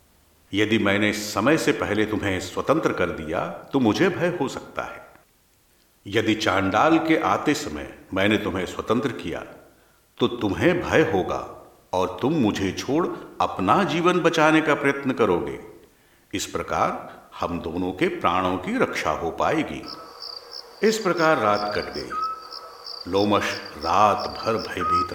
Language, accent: Hindi, native